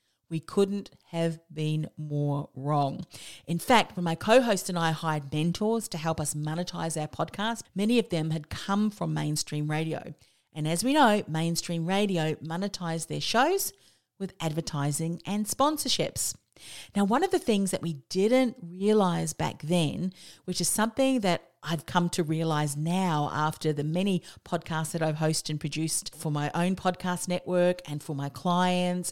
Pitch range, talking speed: 155-205 Hz, 165 wpm